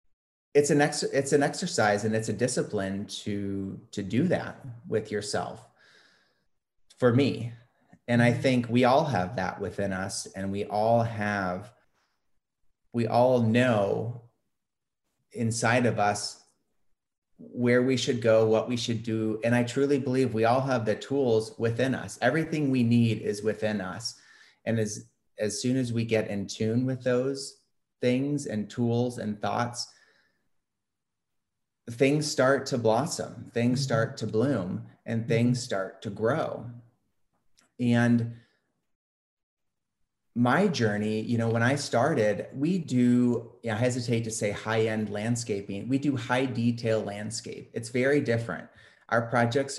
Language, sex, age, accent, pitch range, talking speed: English, male, 30-49, American, 105-125 Hz, 140 wpm